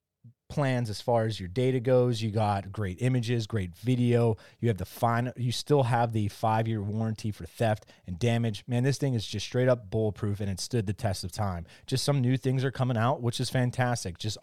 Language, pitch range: English, 105-120 Hz